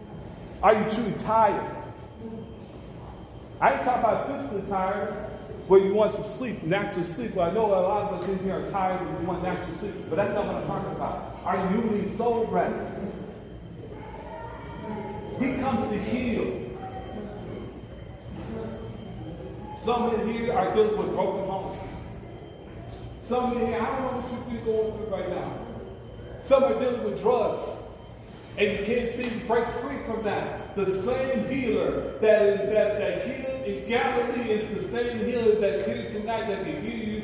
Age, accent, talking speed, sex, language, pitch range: 40-59, American, 165 wpm, male, English, 200-245 Hz